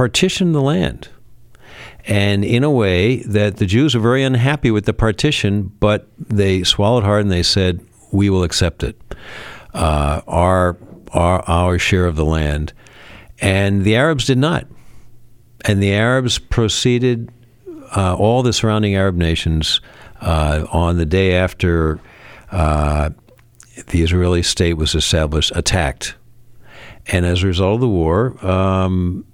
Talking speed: 145 wpm